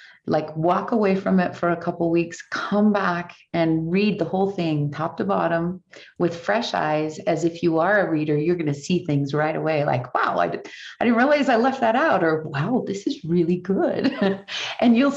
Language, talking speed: English, 210 wpm